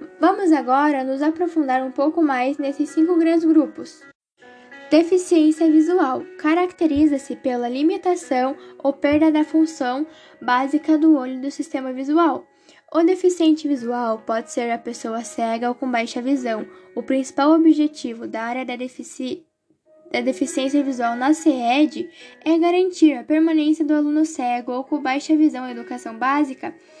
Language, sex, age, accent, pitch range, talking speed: Portuguese, female, 10-29, Brazilian, 265-330 Hz, 140 wpm